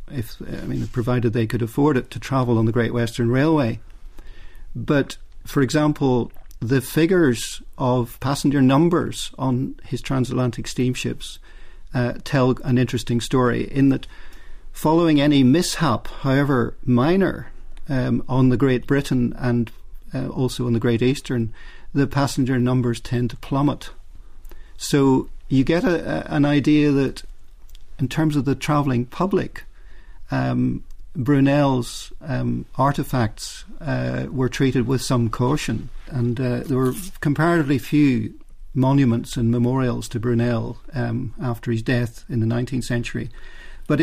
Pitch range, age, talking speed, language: 120-140 Hz, 50-69, 135 wpm, English